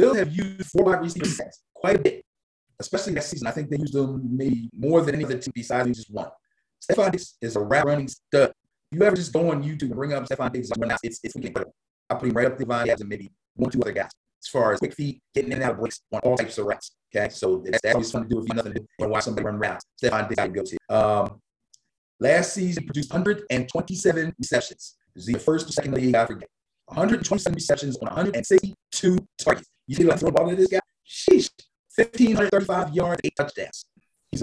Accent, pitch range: American, 130-190 Hz